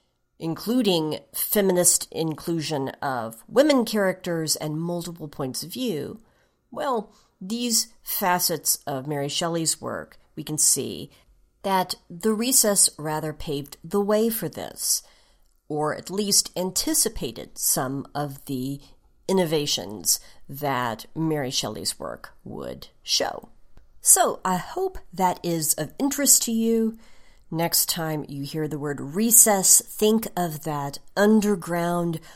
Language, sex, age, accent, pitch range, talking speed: English, female, 40-59, American, 150-195 Hz, 120 wpm